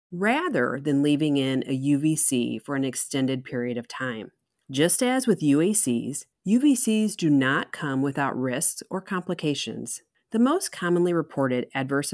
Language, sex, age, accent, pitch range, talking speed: English, female, 40-59, American, 135-200 Hz, 145 wpm